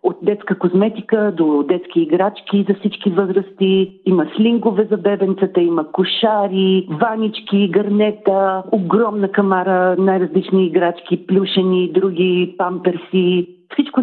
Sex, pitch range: female, 165-205 Hz